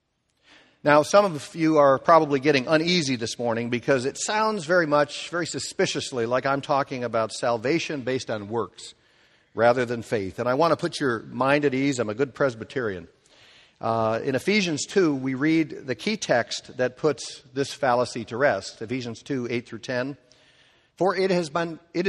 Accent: American